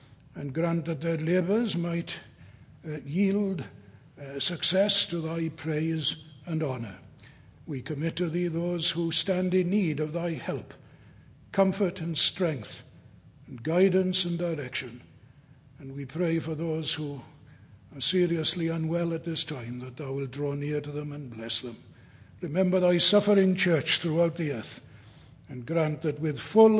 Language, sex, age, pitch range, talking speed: English, male, 60-79, 135-175 Hz, 150 wpm